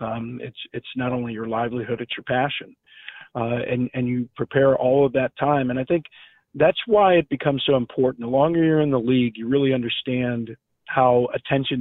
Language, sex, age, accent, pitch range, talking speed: English, male, 40-59, American, 120-140 Hz, 200 wpm